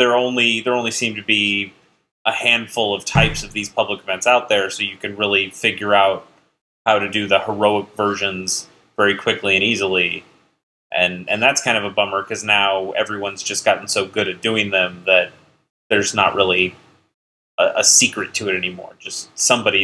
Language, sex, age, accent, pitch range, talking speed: English, male, 30-49, American, 95-115 Hz, 190 wpm